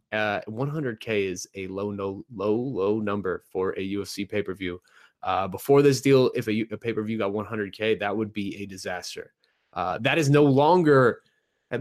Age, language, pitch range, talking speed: 20-39, English, 105-130 Hz, 175 wpm